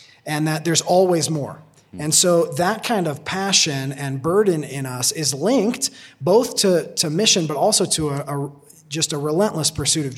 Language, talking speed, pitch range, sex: English, 170 wpm, 150-180 Hz, male